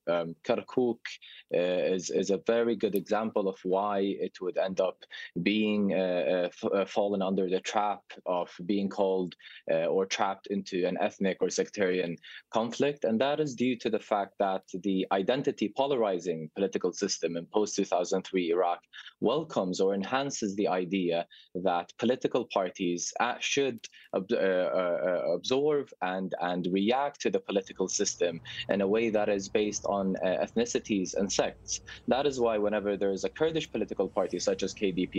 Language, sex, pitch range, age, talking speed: English, male, 90-115 Hz, 20-39, 155 wpm